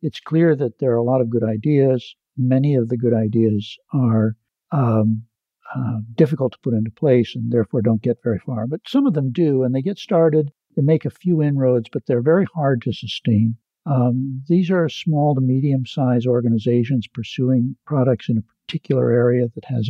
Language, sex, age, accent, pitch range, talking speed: English, male, 60-79, American, 120-150 Hz, 195 wpm